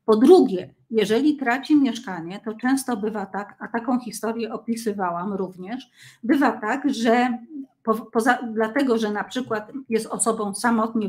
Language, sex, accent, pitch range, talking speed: Polish, female, native, 205-270 Hz, 130 wpm